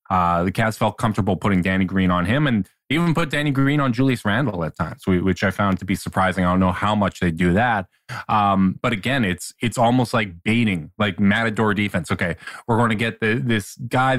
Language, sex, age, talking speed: English, male, 20-39, 225 wpm